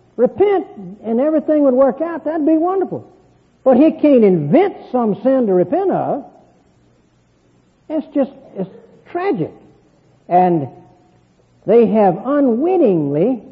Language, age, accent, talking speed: English, 60-79, American, 115 wpm